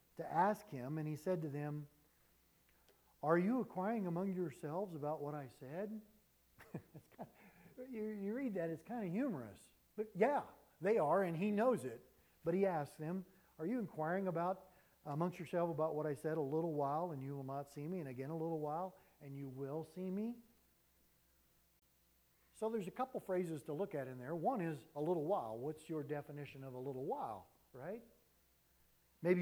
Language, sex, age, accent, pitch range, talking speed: English, male, 50-69, American, 150-195 Hz, 190 wpm